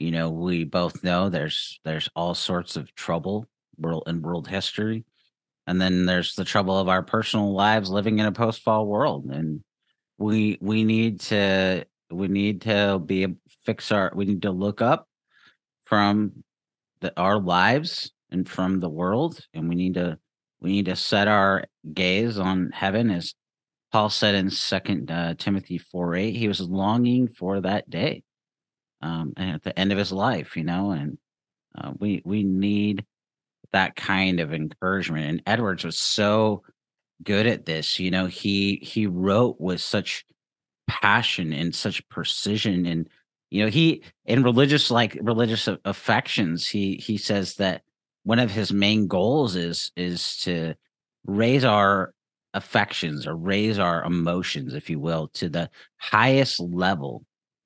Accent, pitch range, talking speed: American, 85-105 Hz, 155 wpm